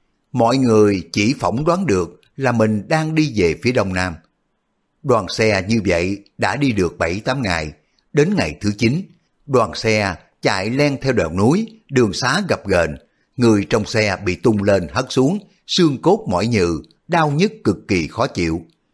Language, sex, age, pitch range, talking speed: Vietnamese, male, 60-79, 95-135 Hz, 180 wpm